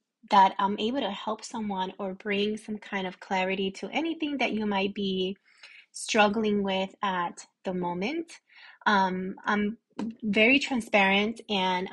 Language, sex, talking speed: English, female, 140 wpm